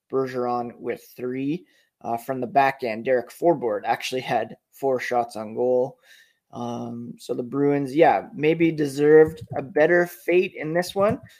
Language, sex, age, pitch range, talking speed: English, male, 20-39, 130-150 Hz, 155 wpm